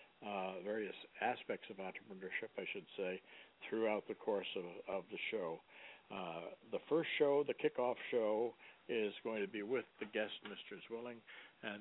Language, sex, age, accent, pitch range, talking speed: English, male, 60-79, American, 95-120 Hz, 165 wpm